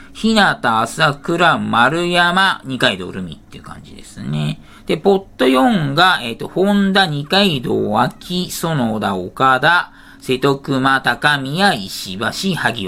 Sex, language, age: male, Japanese, 40-59